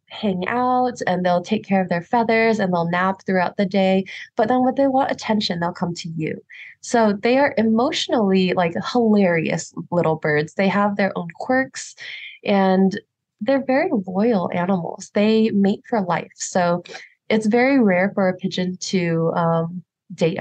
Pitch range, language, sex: 180-220 Hz, English, female